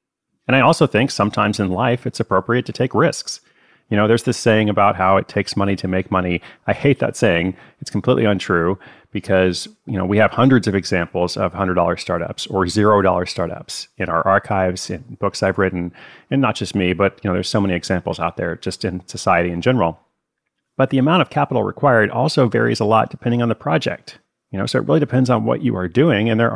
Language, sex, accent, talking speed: English, male, American, 220 wpm